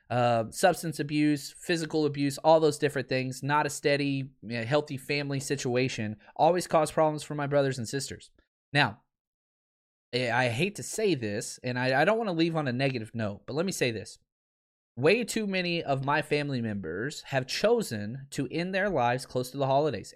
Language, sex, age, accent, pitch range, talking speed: English, male, 20-39, American, 130-165 Hz, 185 wpm